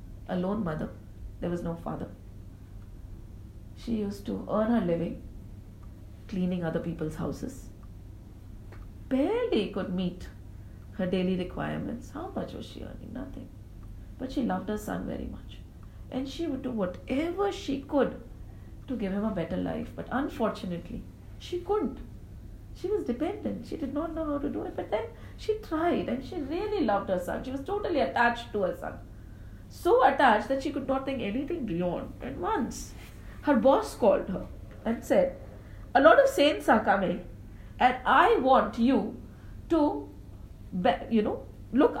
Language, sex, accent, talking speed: English, female, Indian, 160 wpm